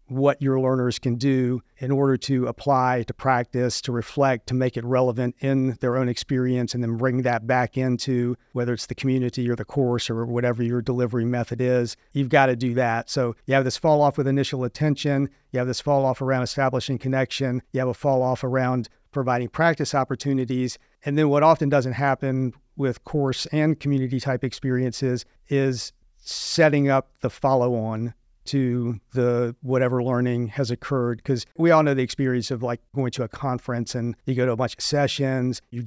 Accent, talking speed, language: American, 190 wpm, English